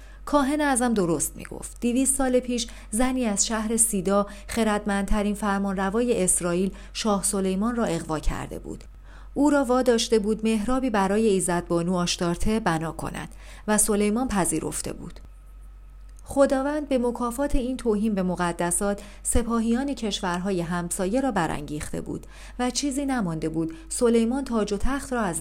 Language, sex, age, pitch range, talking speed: Persian, female, 40-59, 185-240 Hz, 140 wpm